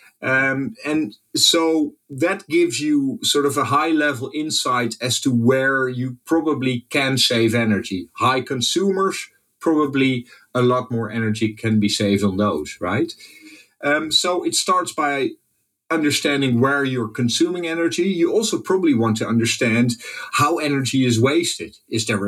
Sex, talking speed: male, 145 wpm